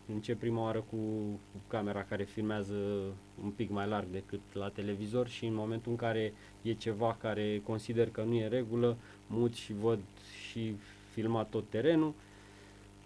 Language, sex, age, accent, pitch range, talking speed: Romanian, male, 20-39, native, 100-120 Hz, 155 wpm